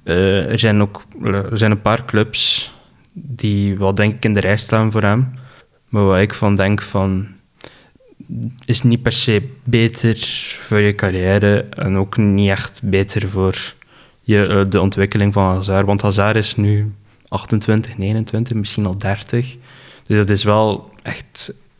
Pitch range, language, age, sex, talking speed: 100-120 Hz, Dutch, 20-39, male, 160 wpm